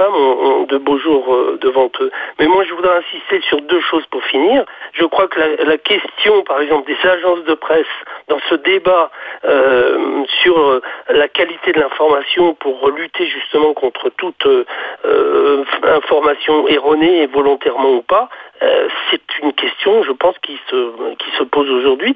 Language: French